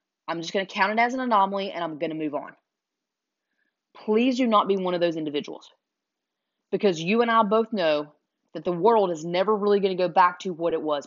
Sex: female